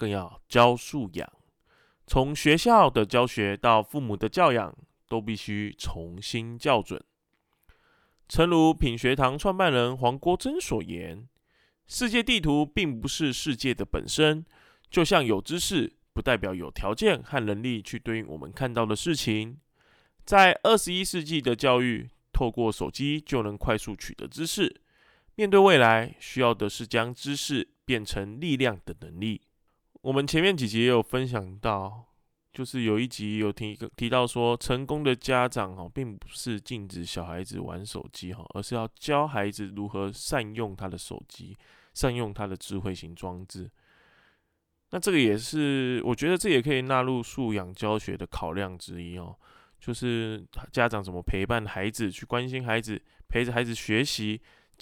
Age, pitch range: 20-39, 105-130 Hz